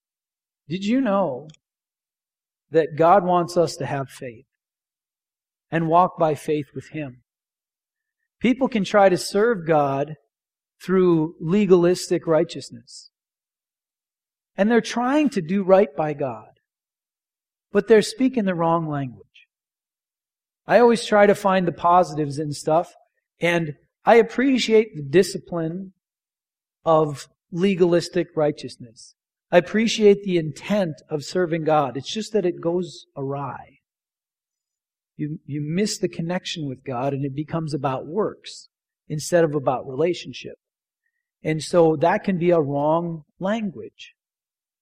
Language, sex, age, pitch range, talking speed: English, male, 40-59, 150-190 Hz, 125 wpm